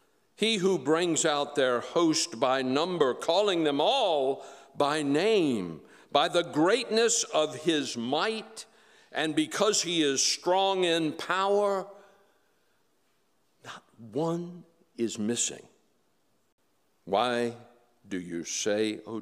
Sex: male